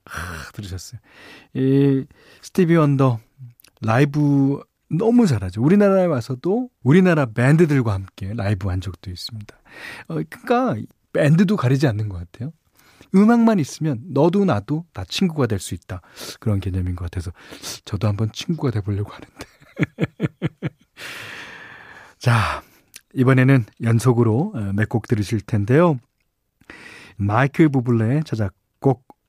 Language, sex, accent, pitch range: Korean, male, native, 105-155 Hz